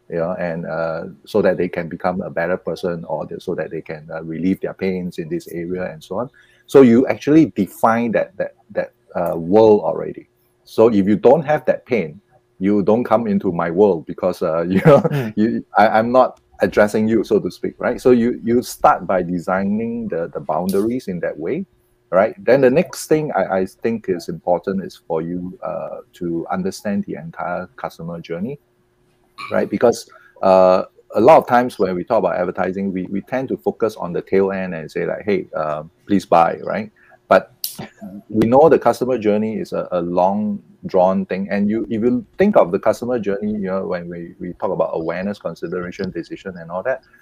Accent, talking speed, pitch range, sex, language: Malaysian, 205 wpm, 90-125 Hz, male, English